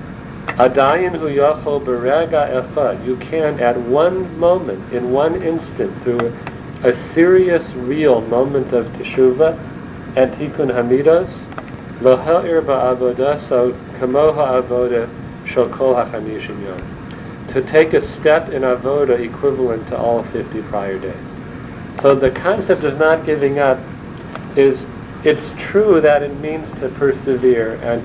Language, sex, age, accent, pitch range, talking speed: English, male, 50-69, American, 125-155 Hz, 105 wpm